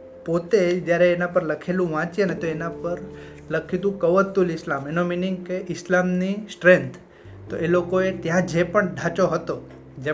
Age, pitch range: 20-39, 160-190 Hz